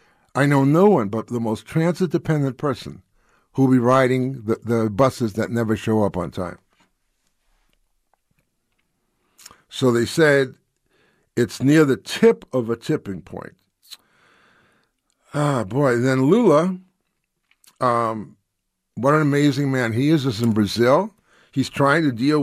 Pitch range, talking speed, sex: 120-150 Hz, 135 wpm, male